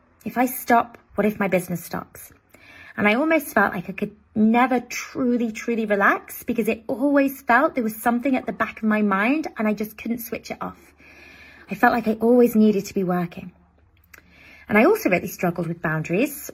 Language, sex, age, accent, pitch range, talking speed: English, female, 20-39, British, 200-250 Hz, 200 wpm